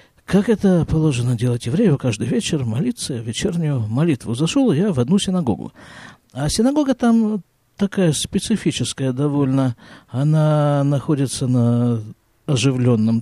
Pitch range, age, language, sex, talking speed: 130-200 Hz, 50-69, Russian, male, 115 wpm